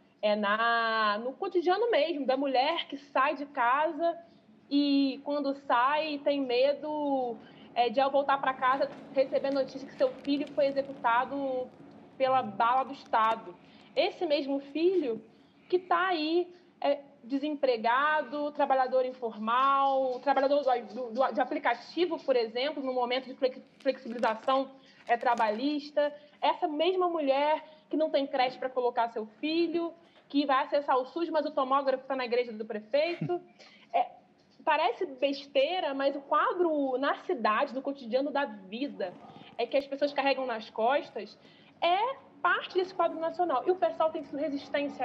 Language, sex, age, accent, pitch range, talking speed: Portuguese, female, 20-39, Brazilian, 250-305 Hz, 150 wpm